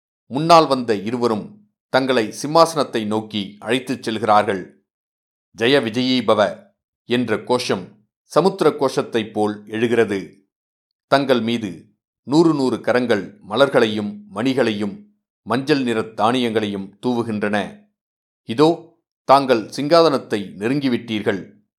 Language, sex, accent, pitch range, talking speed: Tamil, male, native, 110-155 Hz, 85 wpm